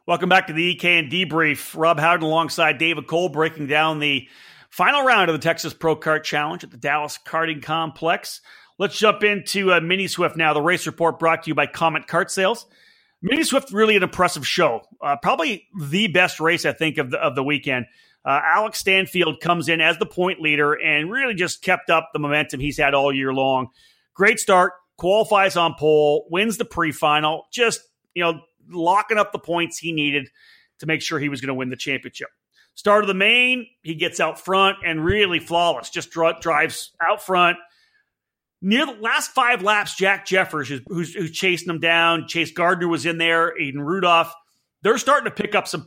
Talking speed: 200 wpm